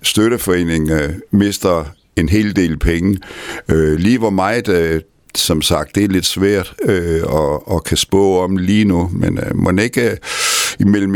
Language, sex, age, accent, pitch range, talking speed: Danish, male, 60-79, native, 90-110 Hz, 165 wpm